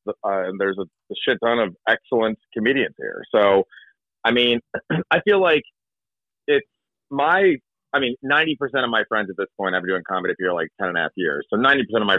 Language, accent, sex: English, American, male